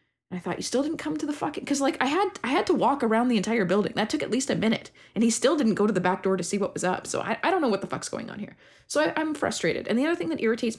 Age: 20-39